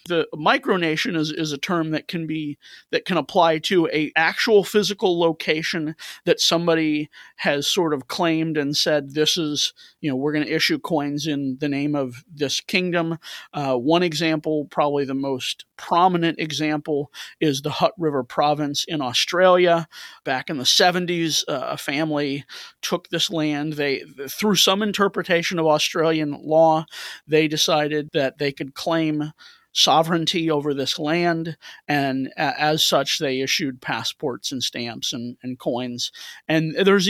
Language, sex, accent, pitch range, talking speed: English, male, American, 140-165 Hz, 155 wpm